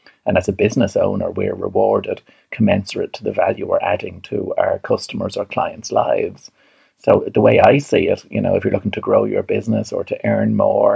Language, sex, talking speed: English, male, 210 wpm